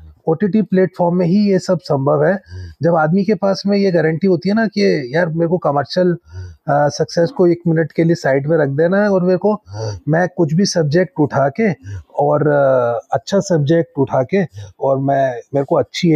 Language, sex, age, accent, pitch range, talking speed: Hindi, male, 30-49, native, 140-180 Hz, 200 wpm